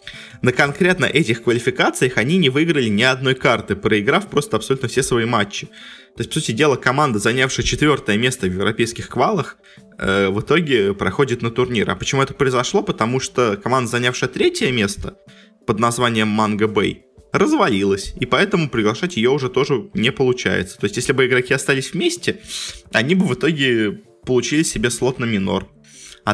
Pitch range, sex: 110-135 Hz, male